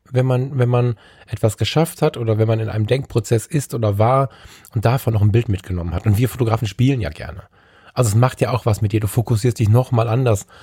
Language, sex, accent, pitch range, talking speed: German, male, German, 100-120 Hz, 235 wpm